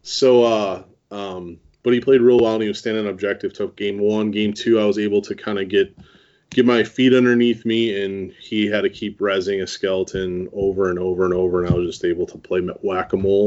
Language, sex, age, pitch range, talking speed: English, male, 20-39, 95-120 Hz, 225 wpm